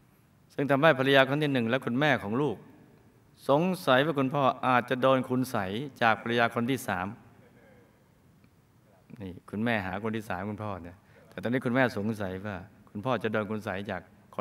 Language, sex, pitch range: Thai, male, 105-135 Hz